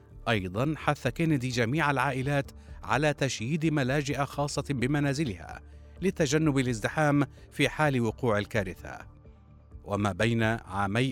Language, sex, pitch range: Arabic, male, 115-155 Hz